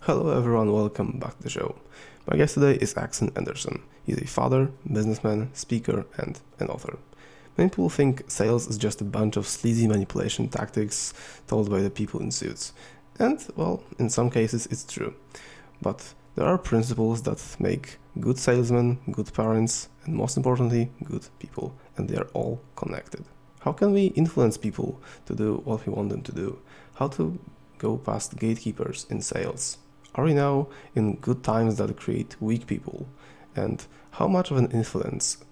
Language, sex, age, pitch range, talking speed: English, male, 20-39, 110-140 Hz, 170 wpm